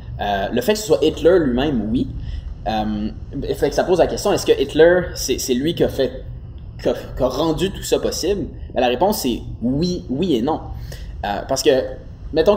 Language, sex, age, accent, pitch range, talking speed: French, male, 20-39, Canadian, 110-140 Hz, 215 wpm